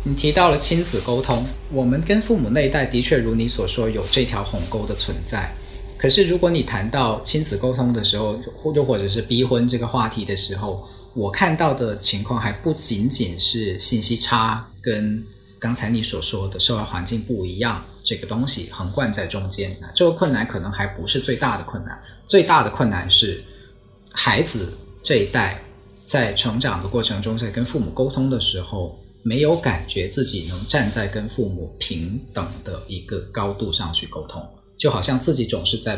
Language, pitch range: Chinese, 95-120 Hz